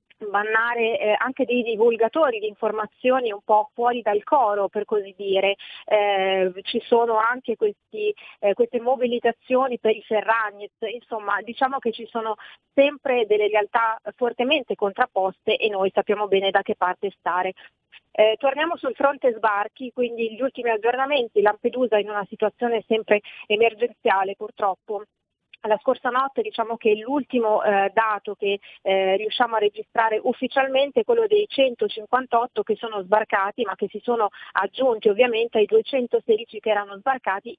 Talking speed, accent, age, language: 140 wpm, native, 30-49, Italian